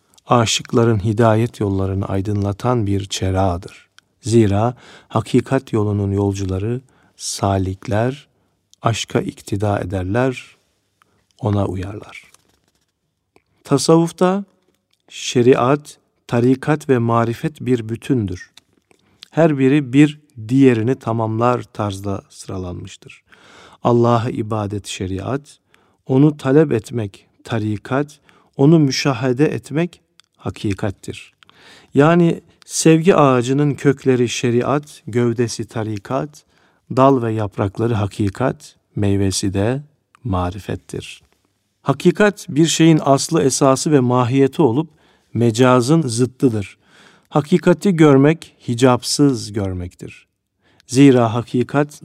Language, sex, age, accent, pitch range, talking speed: Turkish, male, 50-69, native, 105-140 Hz, 80 wpm